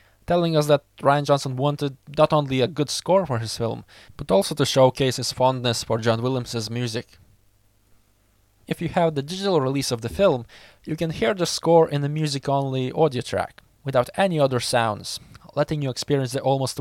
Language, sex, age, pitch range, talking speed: English, male, 20-39, 115-150 Hz, 185 wpm